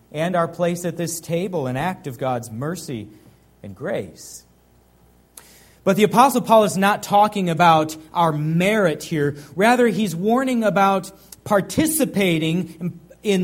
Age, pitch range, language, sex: 40-59, 140-200 Hz, English, male